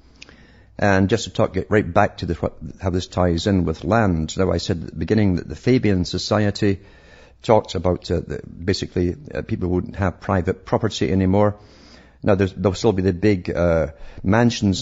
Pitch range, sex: 85-105 Hz, male